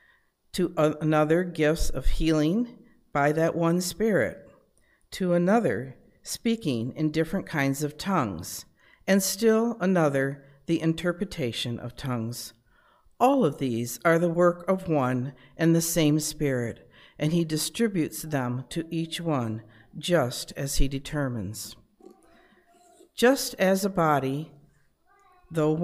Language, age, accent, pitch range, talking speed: English, 60-79, American, 140-180 Hz, 120 wpm